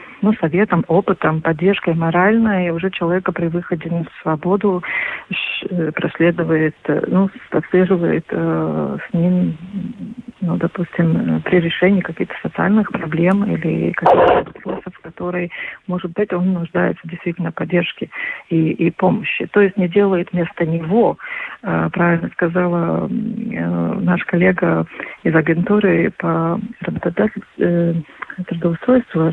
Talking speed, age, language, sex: 115 wpm, 40-59, Russian, female